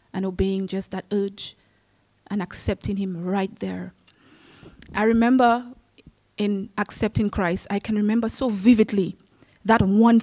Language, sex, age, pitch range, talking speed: English, female, 20-39, 200-235 Hz, 130 wpm